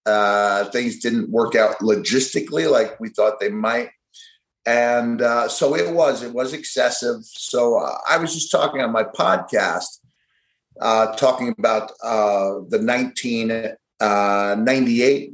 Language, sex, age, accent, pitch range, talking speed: English, male, 50-69, American, 105-130 Hz, 135 wpm